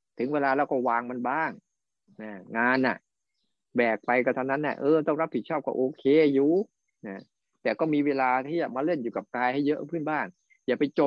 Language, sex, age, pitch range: Thai, male, 20-39, 120-160 Hz